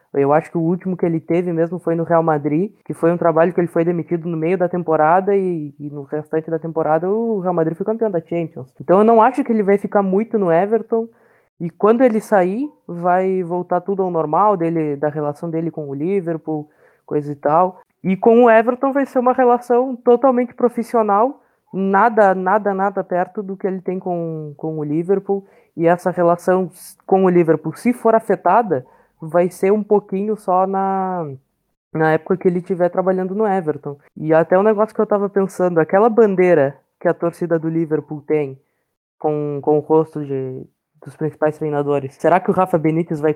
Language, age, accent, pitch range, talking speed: Portuguese, 20-39, Brazilian, 155-200 Hz, 200 wpm